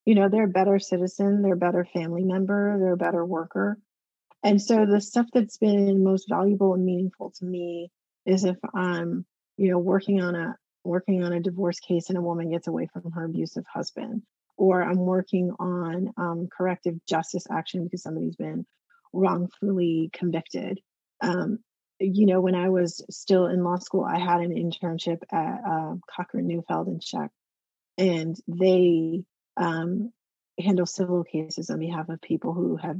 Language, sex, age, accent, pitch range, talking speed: English, female, 30-49, American, 170-195 Hz, 170 wpm